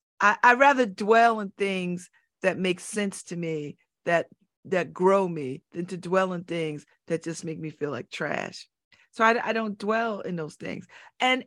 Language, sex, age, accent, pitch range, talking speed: English, female, 50-69, American, 180-240 Hz, 190 wpm